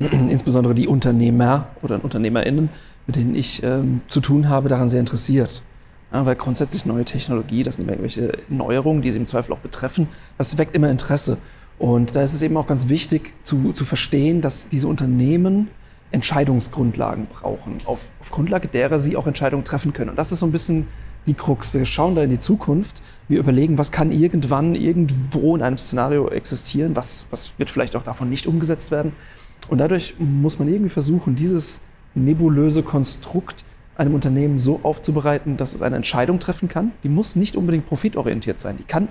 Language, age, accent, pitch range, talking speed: German, 40-59, German, 130-155 Hz, 185 wpm